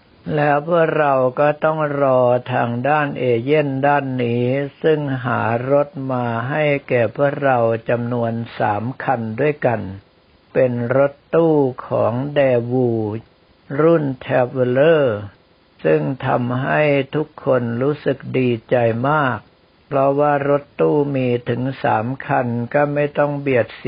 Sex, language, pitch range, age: male, Thai, 120-140 Hz, 60-79